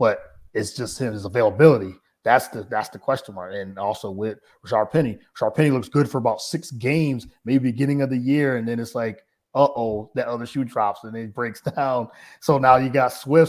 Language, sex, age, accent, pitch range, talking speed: English, male, 30-49, American, 110-140 Hz, 215 wpm